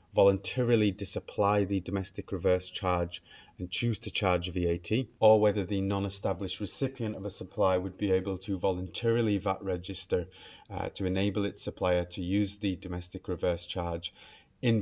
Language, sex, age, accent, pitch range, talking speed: English, male, 30-49, British, 90-105 Hz, 155 wpm